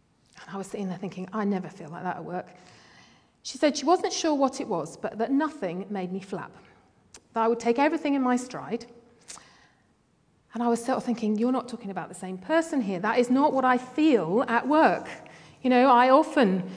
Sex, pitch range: female, 195-260 Hz